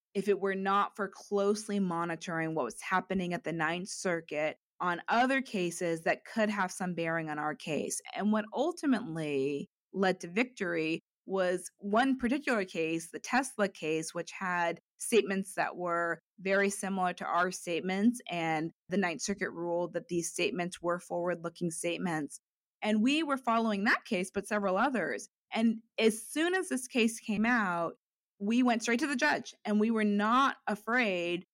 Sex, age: female, 20-39